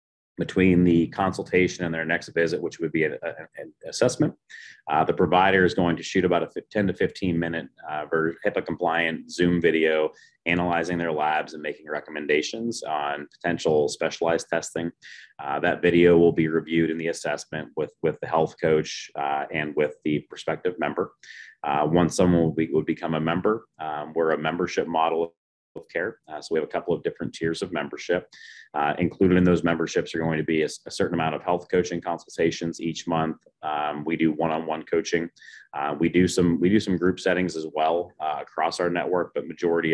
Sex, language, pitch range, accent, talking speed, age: male, English, 80-85 Hz, American, 190 wpm, 30-49